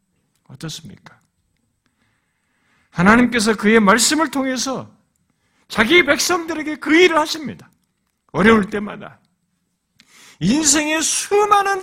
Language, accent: Korean, native